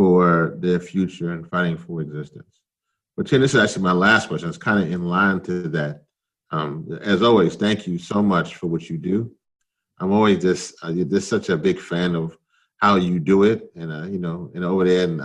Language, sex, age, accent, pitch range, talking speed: English, male, 30-49, American, 80-95 Hz, 215 wpm